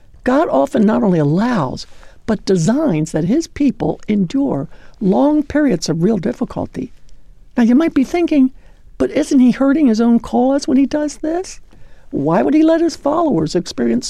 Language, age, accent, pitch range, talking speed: English, 60-79, American, 180-280 Hz, 165 wpm